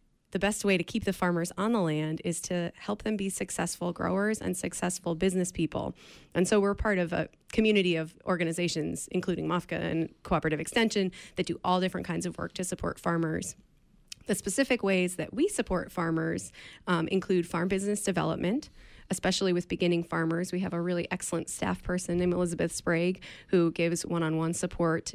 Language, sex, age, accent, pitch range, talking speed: English, female, 20-39, American, 170-200 Hz, 180 wpm